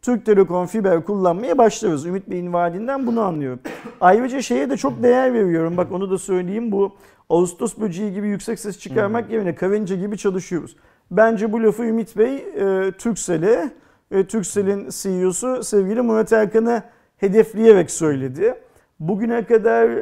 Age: 50-69